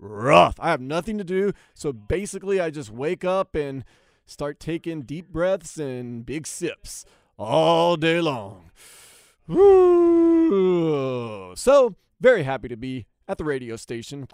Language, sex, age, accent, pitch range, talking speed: English, male, 30-49, American, 140-215 Hz, 140 wpm